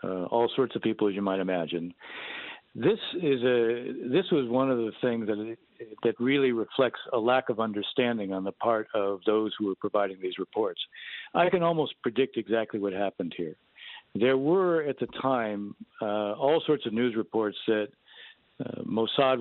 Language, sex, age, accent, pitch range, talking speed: English, male, 60-79, American, 110-145 Hz, 180 wpm